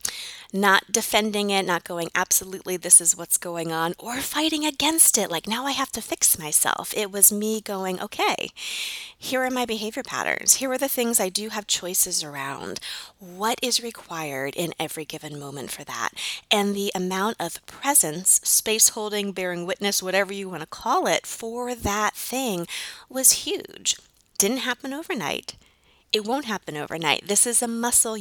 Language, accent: English, American